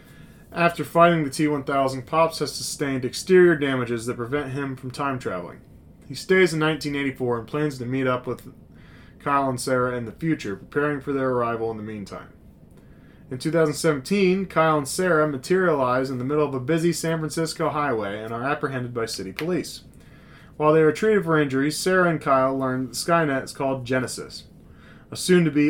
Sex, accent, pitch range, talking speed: male, American, 125-155 Hz, 175 wpm